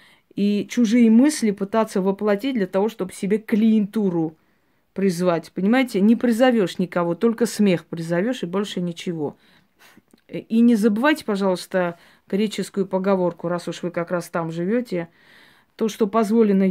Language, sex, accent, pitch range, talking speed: Russian, female, native, 185-230 Hz, 135 wpm